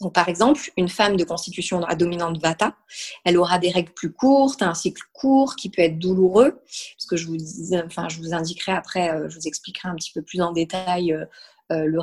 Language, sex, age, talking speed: French, female, 20-39, 210 wpm